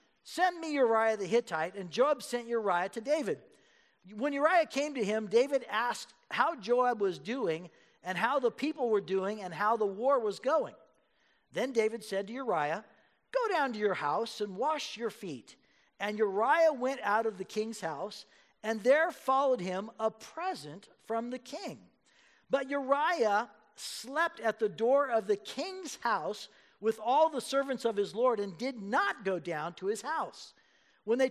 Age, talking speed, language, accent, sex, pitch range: 50-69, 175 wpm, English, American, male, 205-265 Hz